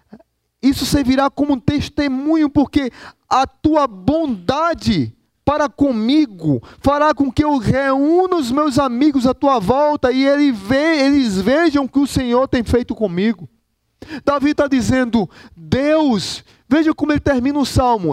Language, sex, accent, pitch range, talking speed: Portuguese, male, Brazilian, 225-300 Hz, 140 wpm